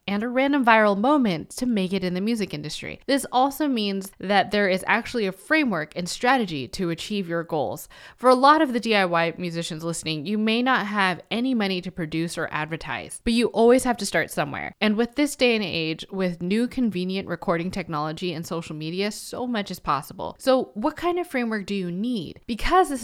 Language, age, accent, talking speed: English, 20-39, American, 210 wpm